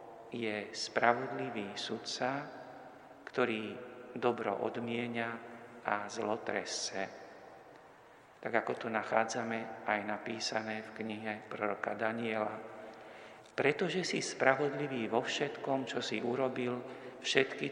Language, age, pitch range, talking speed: Slovak, 50-69, 110-125 Hz, 90 wpm